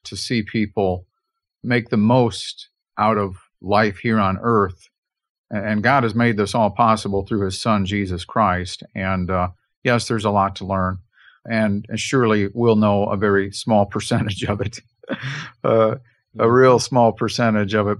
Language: English